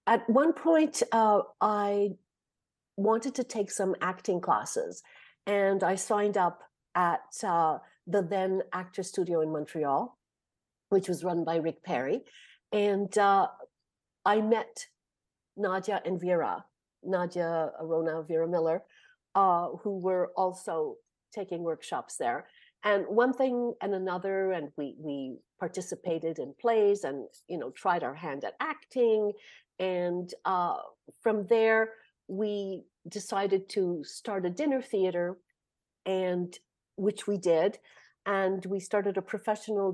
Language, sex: English, female